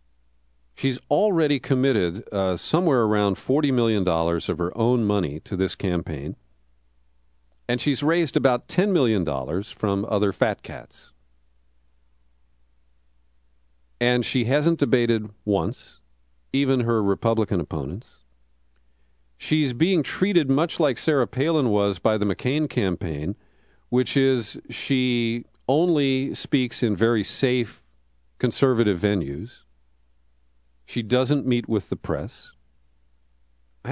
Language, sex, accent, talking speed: English, male, American, 110 wpm